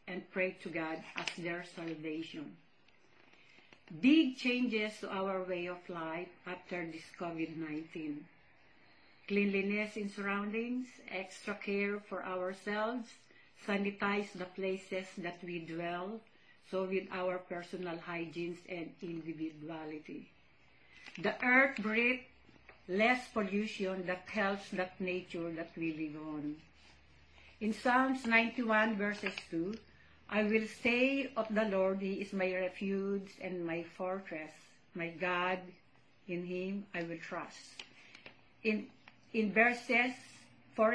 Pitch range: 175-215 Hz